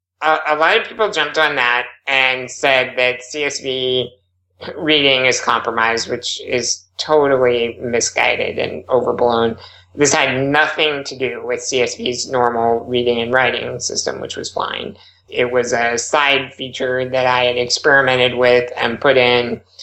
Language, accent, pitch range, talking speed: English, American, 125-150 Hz, 145 wpm